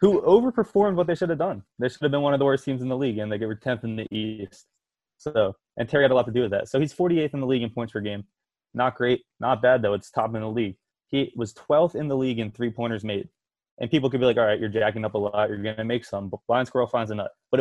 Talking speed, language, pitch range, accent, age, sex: 300 wpm, English, 115-150 Hz, American, 20-39, male